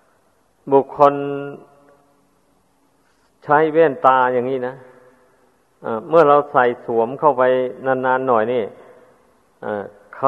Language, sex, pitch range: Thai, male, 125-145 Hz